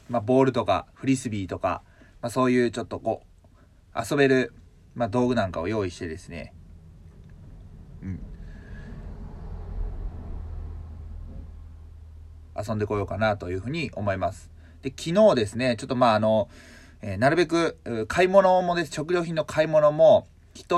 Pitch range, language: 90-130 Hz, Japanese